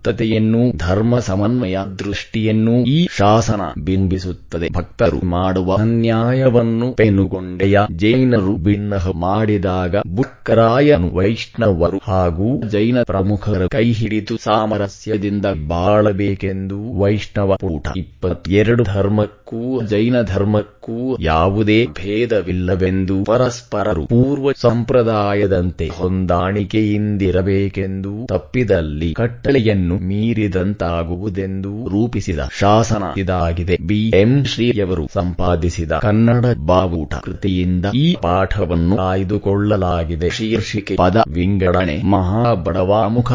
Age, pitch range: 20-39, 95-115 Hz